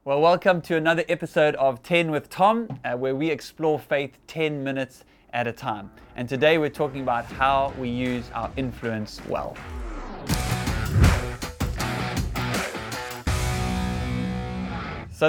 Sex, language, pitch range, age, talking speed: male, English, 125-155 Hz, 20-39, 120 wpm